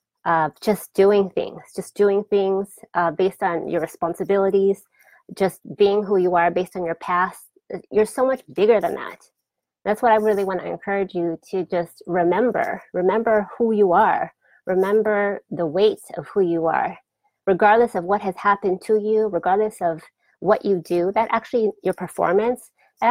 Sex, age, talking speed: female, 30-49, 170 wpm